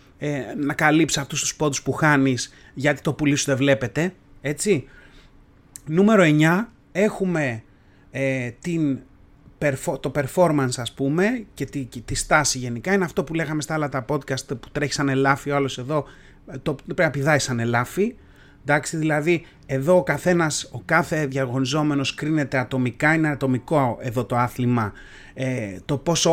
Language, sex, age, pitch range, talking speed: Greek, male, 30-49, 130-175 Hz, 150 wpm